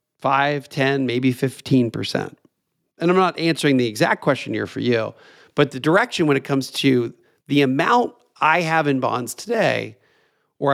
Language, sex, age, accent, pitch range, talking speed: English, male, 40-59, American, 120-160 Hz, 160 wpm